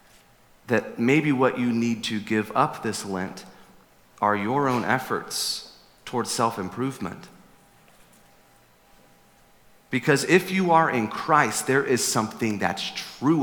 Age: 40-59